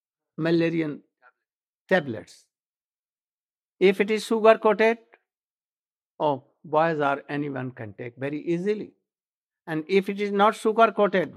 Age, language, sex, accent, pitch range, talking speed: 60-79, English, male, Indian, 170-220 Hz, 115 wpm